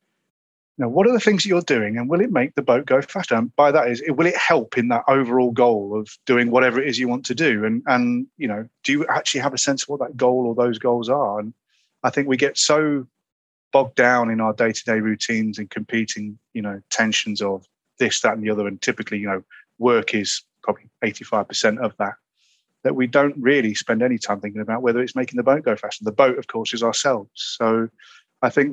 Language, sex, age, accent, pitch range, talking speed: English, male, 30-49, British, 110-135 Hz, 230 wpm